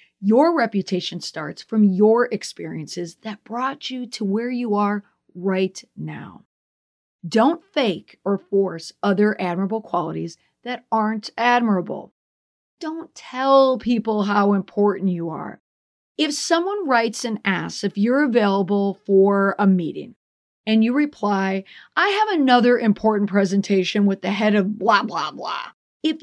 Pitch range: 190-250 Hz